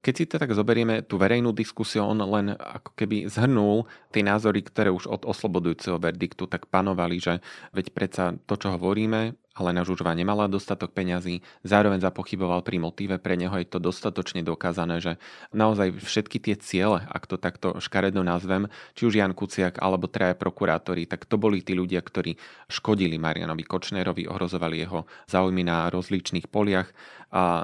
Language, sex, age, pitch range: Slovak, male, 30-49, 85-100 Hz